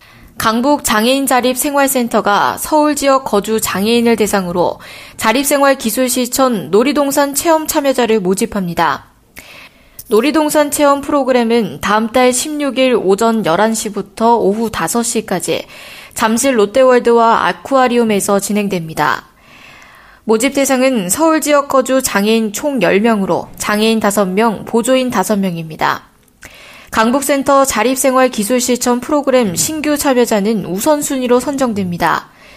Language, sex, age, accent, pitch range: Korean, female, 20-39, native, 210-275 Hz